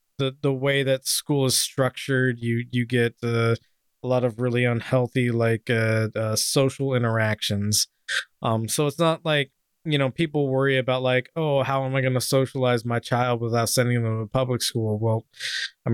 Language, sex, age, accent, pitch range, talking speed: English, male, 20-39, American, 115-135 Hz, 185 wpm